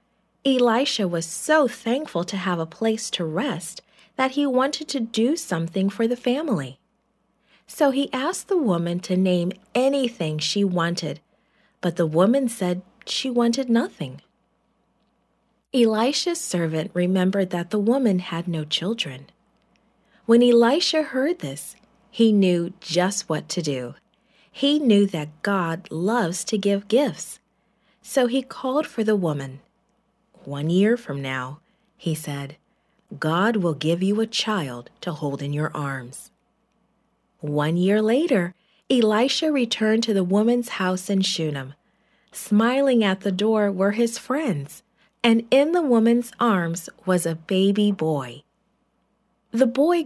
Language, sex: English, female